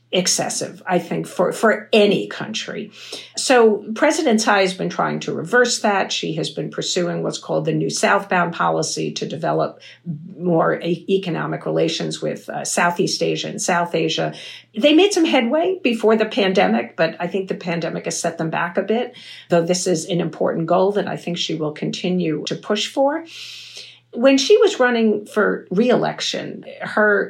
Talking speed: 170 wpm